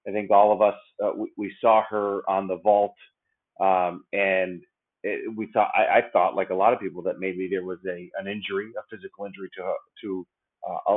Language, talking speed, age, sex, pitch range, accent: English, 200 wpm, 30-49, male, 100-130 Hz, American